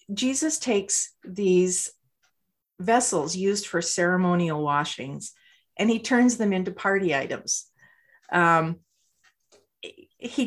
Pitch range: 175-240 Hz